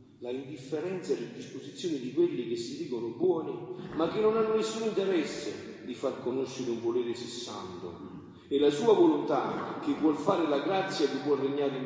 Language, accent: Italian, native